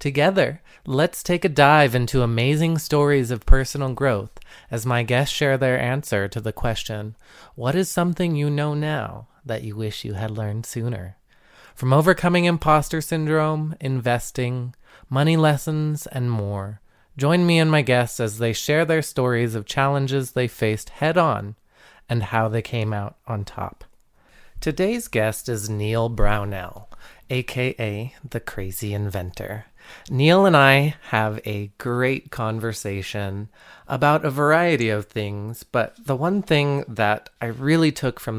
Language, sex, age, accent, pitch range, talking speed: English, male, 20-39, American, 110-140 Hz, 150 wpm